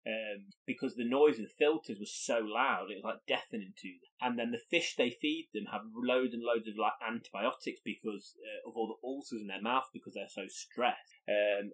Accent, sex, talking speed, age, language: British, male, 225 wpm, 30-49, English